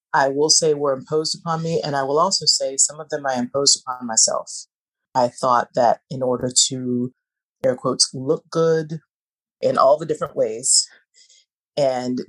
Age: 30-49